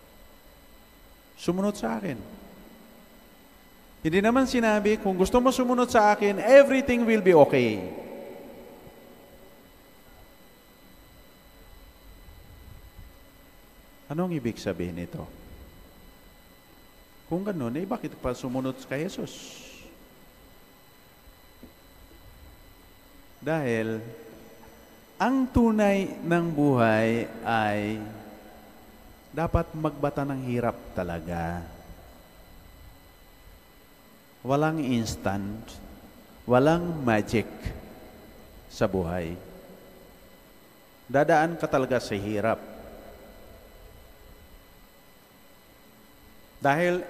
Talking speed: 65 wpm